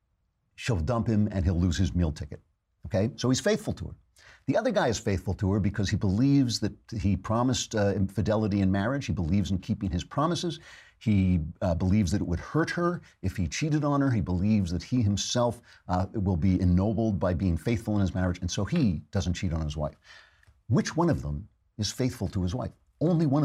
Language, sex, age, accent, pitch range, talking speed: English, male, 50-69, American, 90-115 Hz, 220 wpm